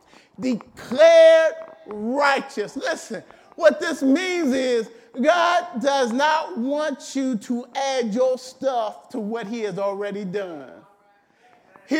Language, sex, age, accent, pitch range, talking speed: English, male, 50-69, American, 245-330 Hz, 115 wpm